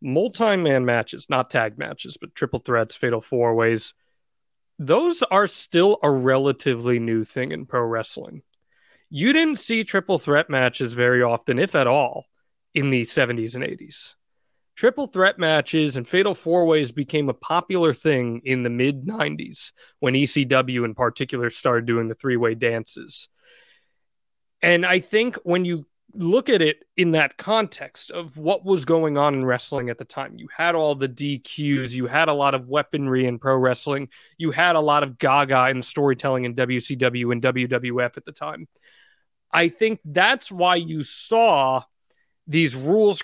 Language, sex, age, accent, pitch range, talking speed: English, male, 30-49, American, 125-170 Hz, 165 wpm